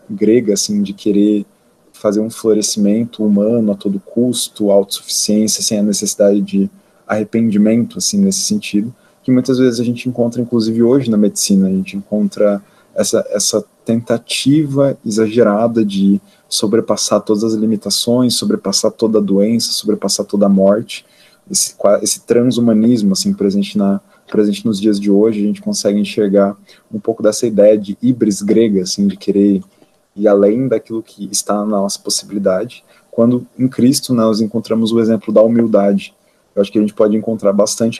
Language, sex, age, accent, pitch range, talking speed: Portuguese, male, 20-39, Brazilian, 100-120 Hz, 160 wpm